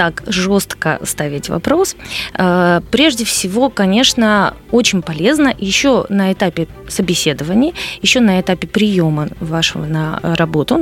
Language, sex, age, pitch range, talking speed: Russian, female, 20-39, 175-225 Hz, 110 wpm